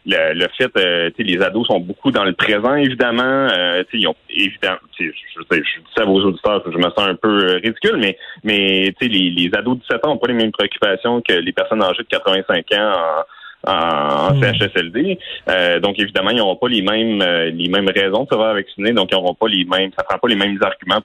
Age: 30-49